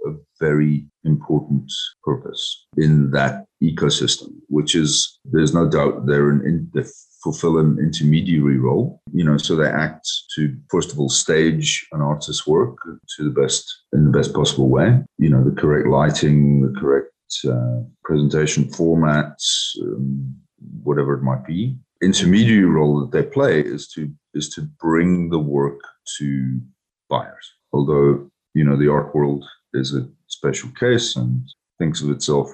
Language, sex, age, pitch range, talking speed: English, male, 40-59, 65-75 Hz, 155 wpm